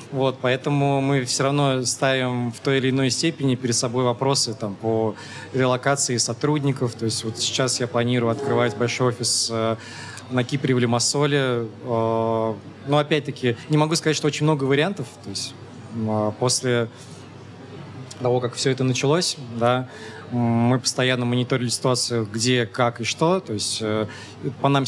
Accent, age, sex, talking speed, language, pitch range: native, 20-39, male, 145 wpm, Russian, 115-135 Hz